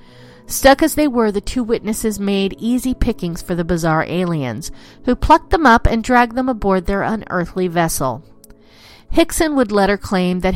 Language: English